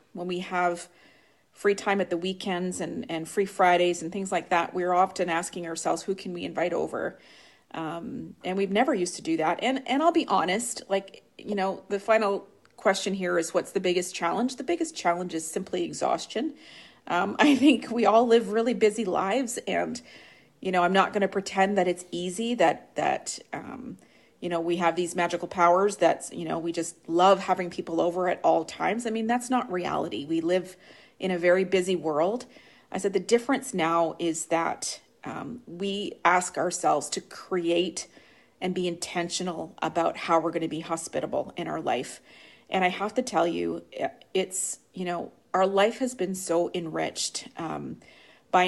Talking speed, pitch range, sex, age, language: 190 wpm, 175-200 Hz, female, 40-59, English